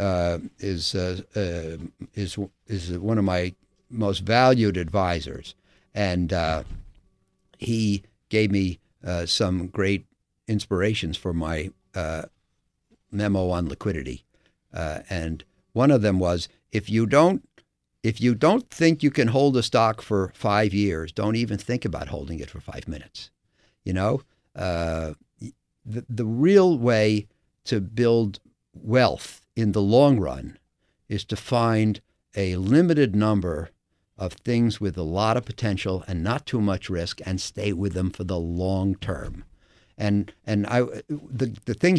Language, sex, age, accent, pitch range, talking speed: English, male, 60-79, American, 90-115 Hz, 145 wpm